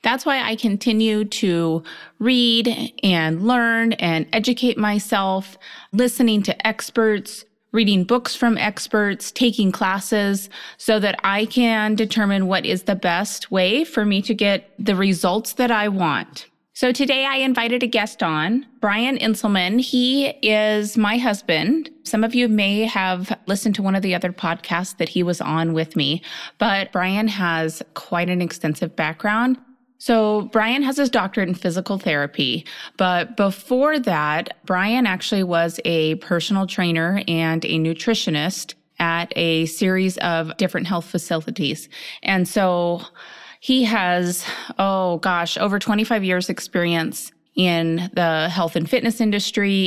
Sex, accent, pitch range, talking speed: female, American, 175-225 Hz, 145 wpm